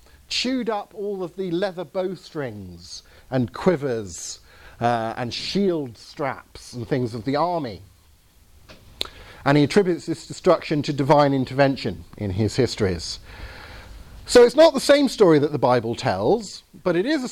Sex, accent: male, British